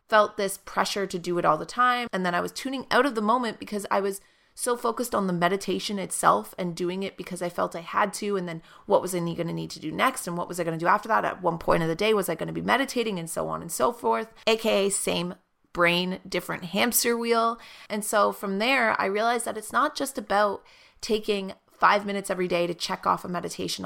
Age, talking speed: 30-49, 255 wpm